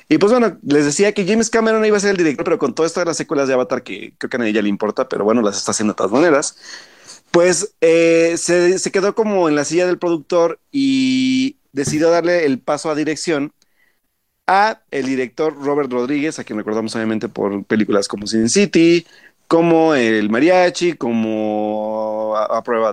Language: Spanish